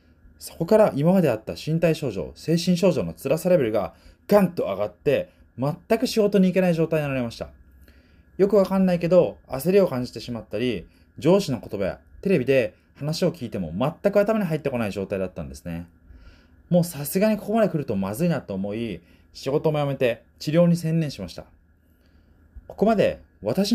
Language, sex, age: Japanese, male, 20-39